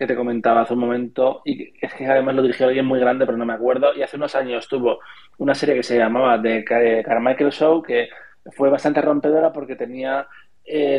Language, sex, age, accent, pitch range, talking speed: Spanish, male, 20-39, Spanish, 120-140 Hz, 215 wpm